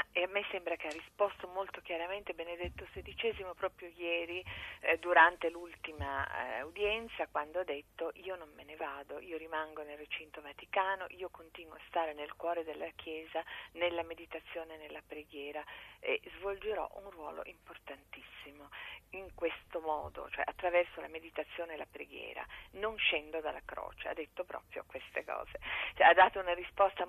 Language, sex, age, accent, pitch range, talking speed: Italian, female, 40-59, native, 160-190 Hz, 155 wpm